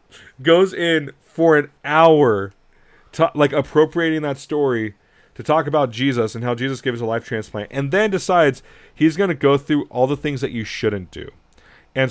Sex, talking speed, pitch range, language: male, 185 wpm, 105-135 Hz, English